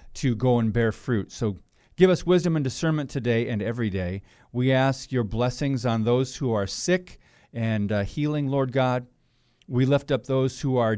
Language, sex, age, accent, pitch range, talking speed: English, male, 40-59, American, 115-140 Hz, 190 wpm